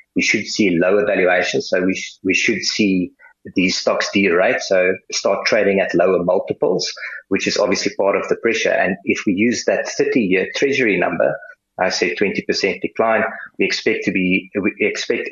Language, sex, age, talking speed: English, male, 30-49, 180 wpm